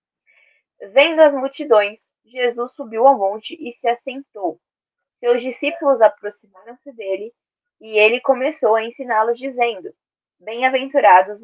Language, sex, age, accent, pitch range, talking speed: Portuguese, female, 20-39, Brazilian, 215-280 Hz, 110 wpm